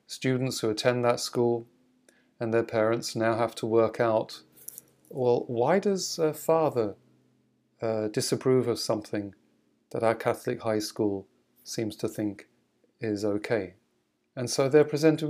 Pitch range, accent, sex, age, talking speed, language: 110-140 Hz, British, male, 40-59, 140 wpm, English